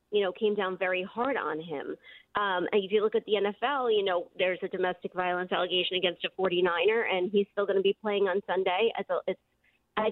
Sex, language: female, English